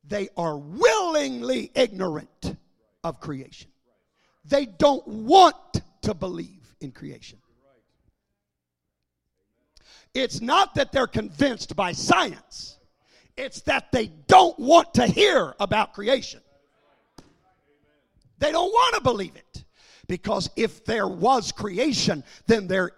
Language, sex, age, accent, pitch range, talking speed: English, male, 50-69, American, 195-310 Hz, 110 wpm